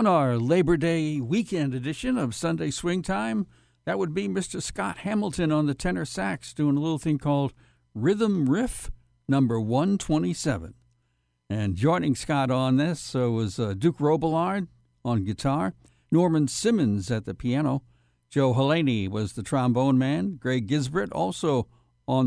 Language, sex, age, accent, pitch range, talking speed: English, male, 60-79, American, 115-155 Hz, 150 wpm